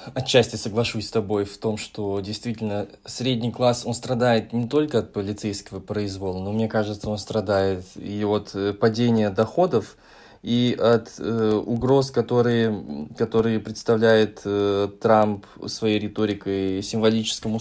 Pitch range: 100-115 Hz